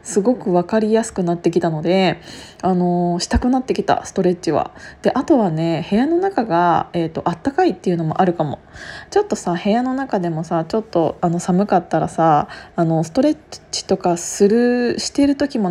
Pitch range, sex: 175-235 Hz, female